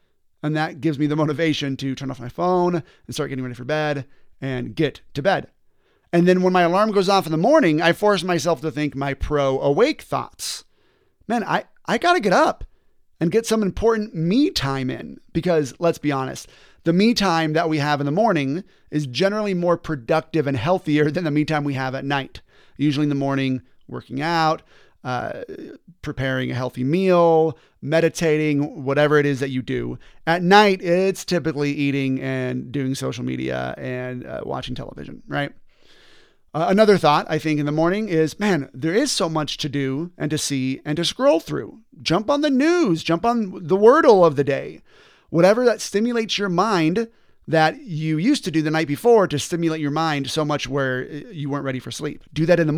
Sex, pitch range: male, 140-180 Hz